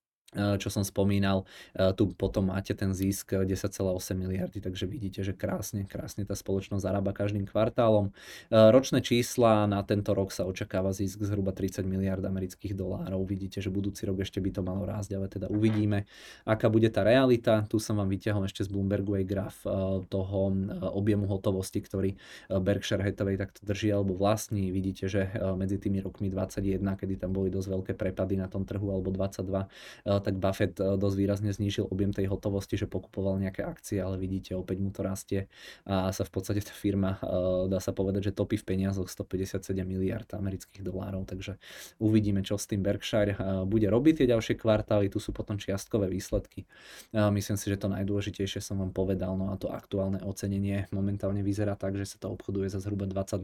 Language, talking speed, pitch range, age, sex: Czech, 180 wpm, 95-105 Hz, 20-39, male